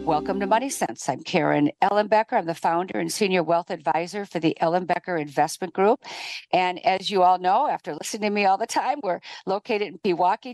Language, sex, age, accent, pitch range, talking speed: English, female, 50-69, American, 175-215 Hz, 210 wpm